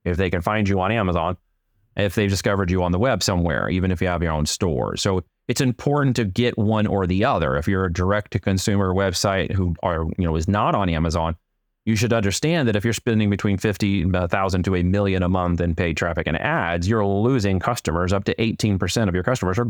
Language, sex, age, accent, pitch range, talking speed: English, male, 30-49, American, 90-110 Hz, 230 wpm